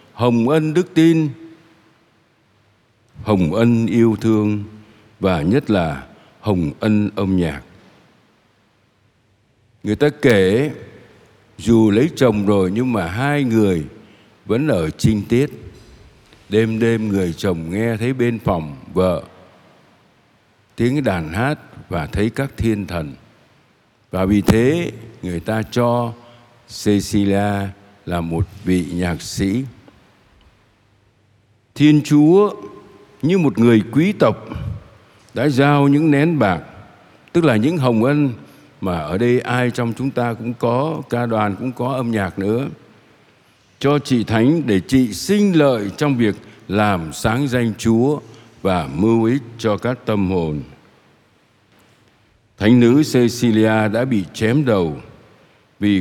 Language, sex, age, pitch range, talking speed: Vietnamese, male, 60-79, 105-125 Hz, 130 wpm